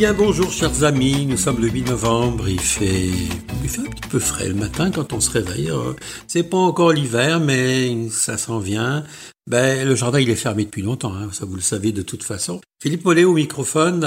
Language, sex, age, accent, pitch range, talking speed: French, male, 60-79, French, 105-140 Hz, 220 wpm